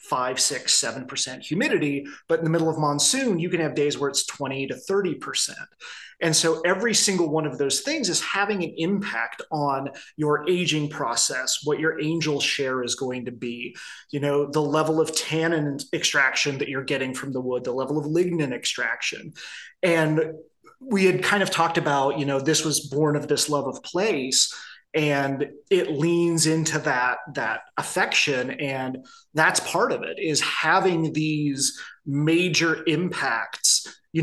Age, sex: 30-49, male